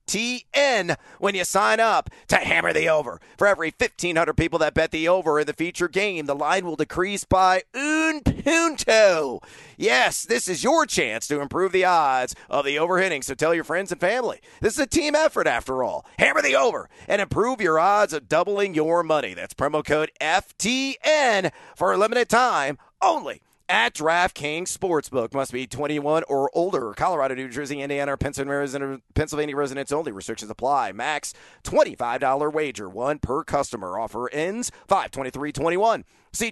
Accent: American